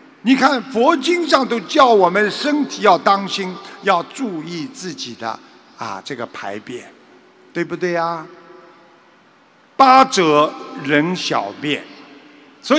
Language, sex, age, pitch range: Chinese, male, 50-69, 165-235 Hz